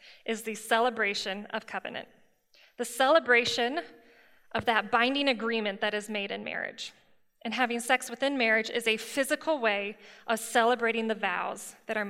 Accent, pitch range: American, 220-245 Hz